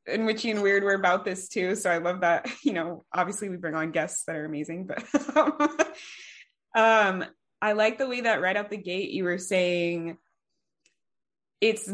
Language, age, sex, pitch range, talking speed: English, 20-39, female, 165-200 Hz, 190 wpm